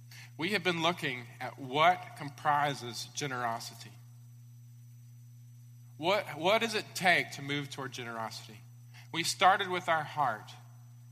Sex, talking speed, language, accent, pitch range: male, 120 wpm, English, American, 120-150 Hz